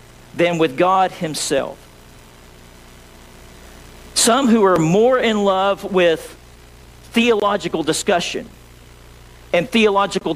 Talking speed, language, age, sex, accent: 85 wpm, English, 50-69, male, American